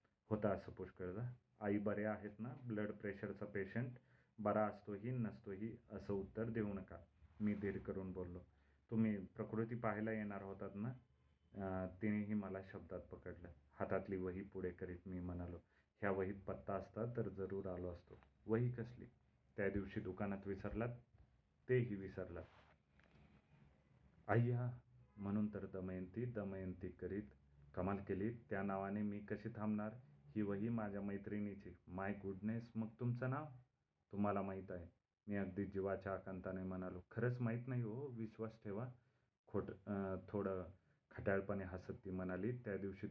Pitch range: 95-110 Hz